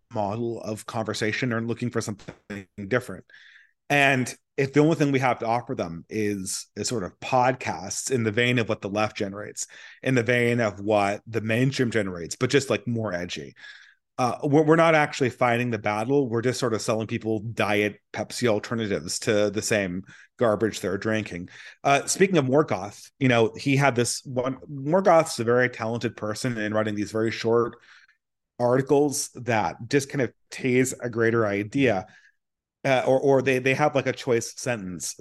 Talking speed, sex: 180 wpm, male